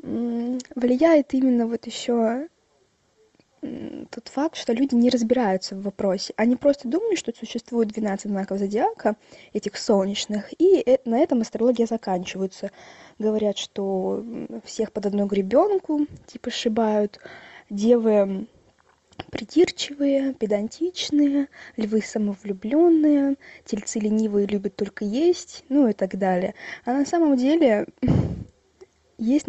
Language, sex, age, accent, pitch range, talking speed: Russian, female, 20-39, native, 210-255 Hz, 110 wpm